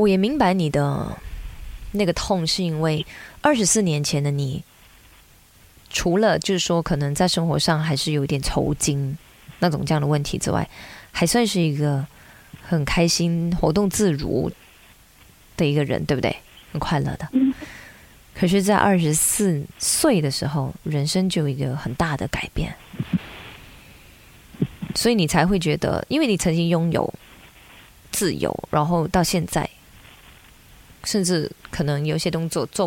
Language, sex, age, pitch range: Chinese, female, 20-39, 150-190 Hz